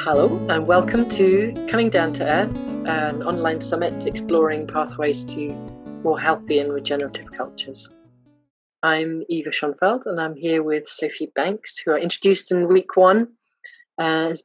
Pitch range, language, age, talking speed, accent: 150-195 Hz, English, 30-49, 150 wpm, British